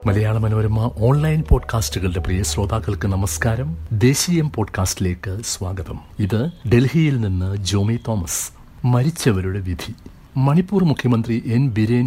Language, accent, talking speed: Malayalam, native, 105 wpm